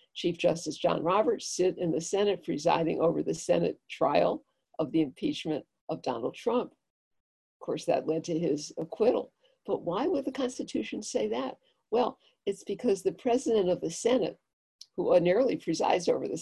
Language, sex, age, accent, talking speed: English, female, 60-79, American, 170 wpm